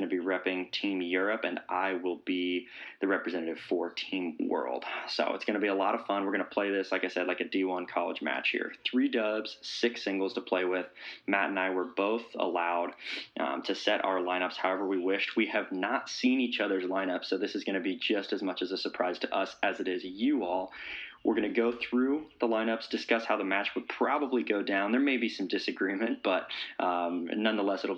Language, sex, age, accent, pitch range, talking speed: English, male, 20-39, American, 95-115 Hz, 235 wpm